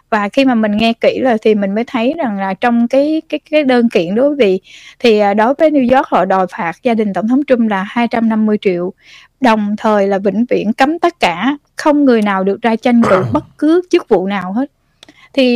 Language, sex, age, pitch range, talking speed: Vietnamese, female, 10-29, 210-270 Hz, 230 wpm